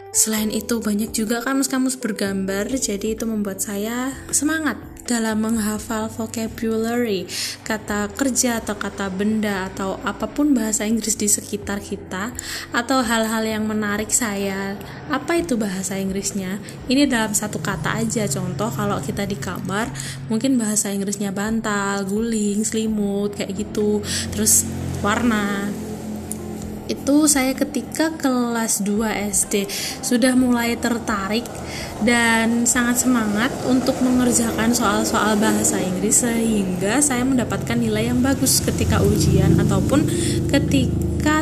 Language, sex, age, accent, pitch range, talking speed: Indonesian, female, 10-29, native, 200-240 Hz, 120 wpm